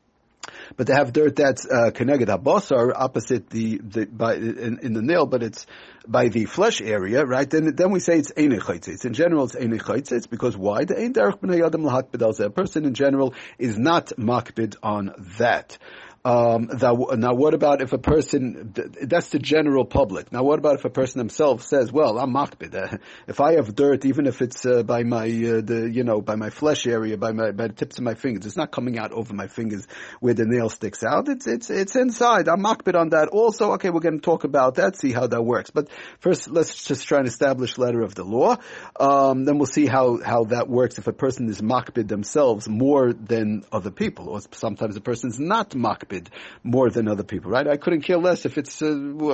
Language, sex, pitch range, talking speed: English, male, 115-150 Hz, 215 wpm